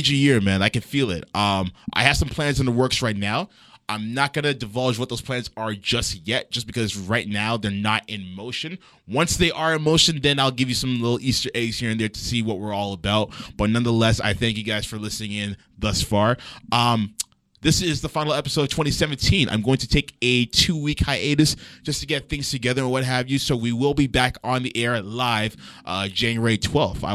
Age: 20-39